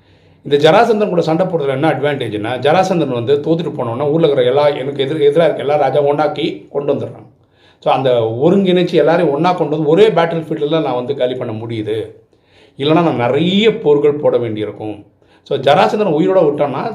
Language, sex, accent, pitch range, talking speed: Tamil, male, native, 115-165 Hz, 170 wpm